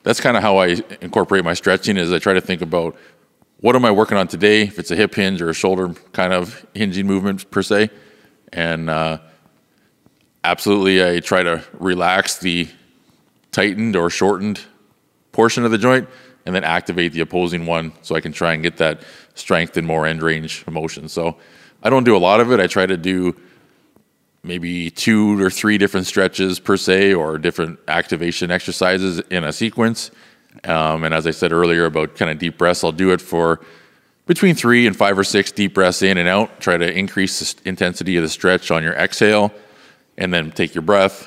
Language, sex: English, male